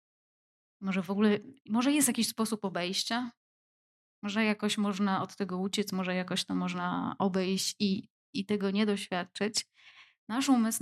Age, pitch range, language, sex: 20-39, 195-220 Hz, Polish, female